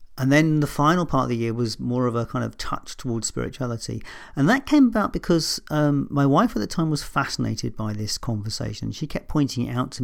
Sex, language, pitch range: male, English, 110-140 Hz